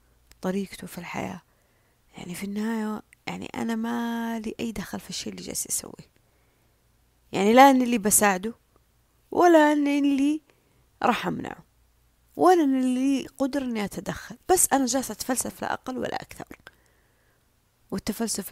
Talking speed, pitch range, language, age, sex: 135 wpm, 190-240 Hz, Arabic, 30-49, female